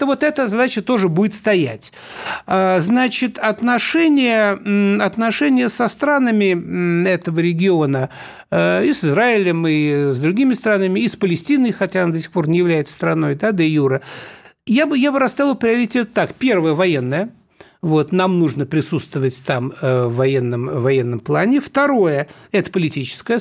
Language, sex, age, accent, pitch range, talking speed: Russian, male, 60-79, native, 150-230 Hz, 145 wpm